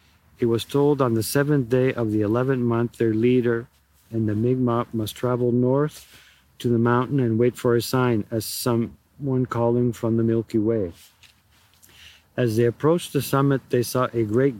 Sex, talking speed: male, 175 wpm